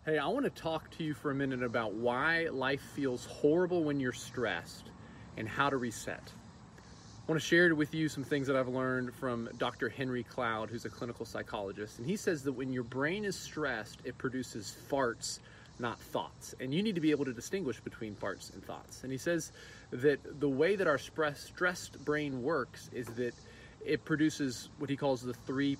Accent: American